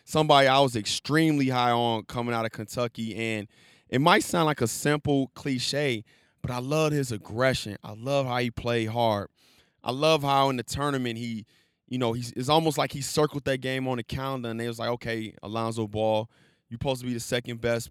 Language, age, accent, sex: English, 20-39, American, male